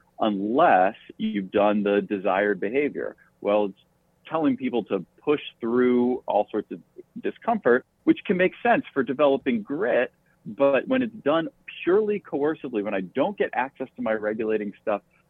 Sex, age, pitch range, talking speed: male, 40-59, 105-145 Hz, 155 wpm